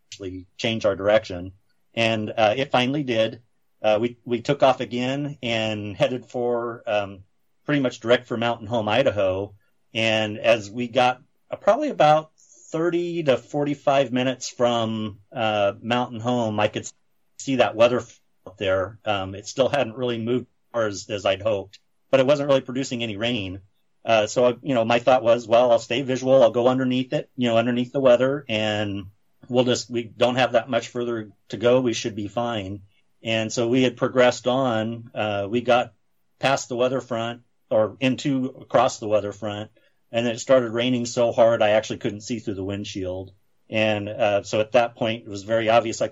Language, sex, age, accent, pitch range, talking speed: English, male, 40-59, American, 105-125 Hz, 185 wpm